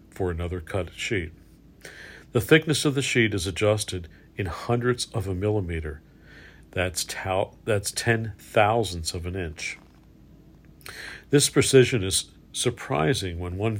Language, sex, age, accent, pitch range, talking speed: English, male, 50-69, American, 90-115 Hz, 130 wpm